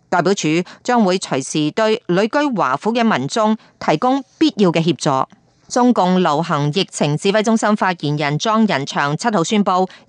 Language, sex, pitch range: Chinese, female, 170-225 Hz